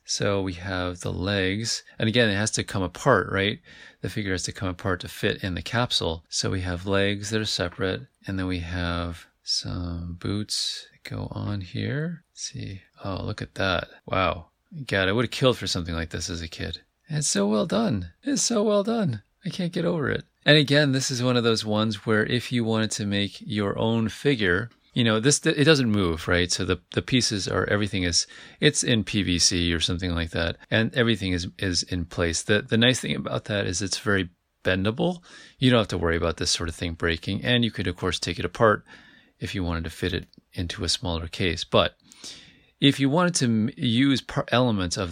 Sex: male